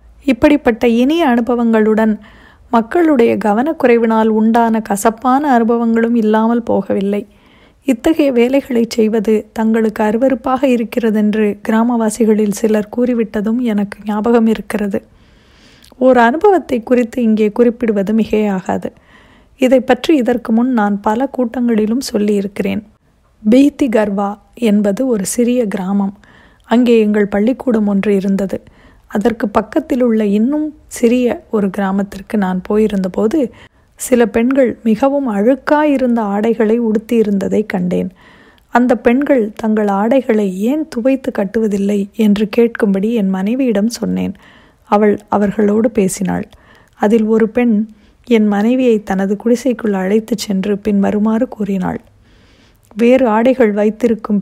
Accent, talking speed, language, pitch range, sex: native, 105 wpm, Tamil, 210-245 Hz, female